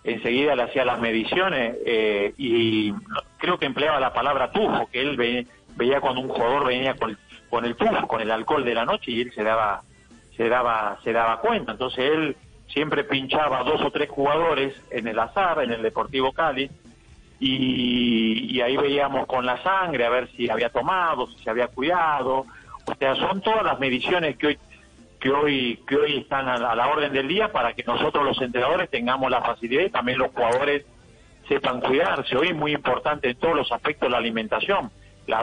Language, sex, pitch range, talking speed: Spanish, male, 120-145 Hz, 200 wpm